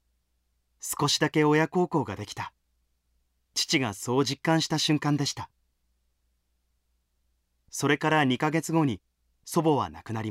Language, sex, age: Japanese, male, 30-49